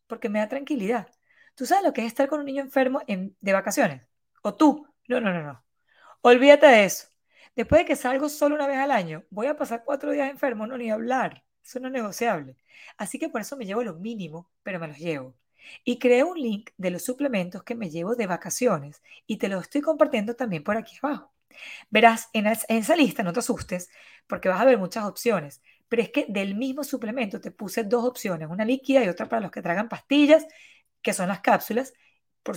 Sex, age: female, 20-39